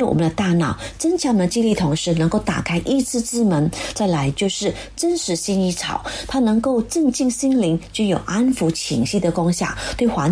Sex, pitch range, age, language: female, 165-255 Hz, 30-49, Chinese